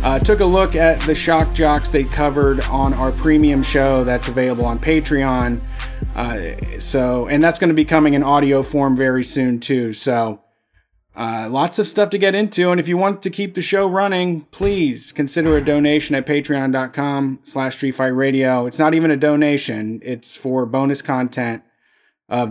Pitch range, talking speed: 130-160 Hz, 180 wpm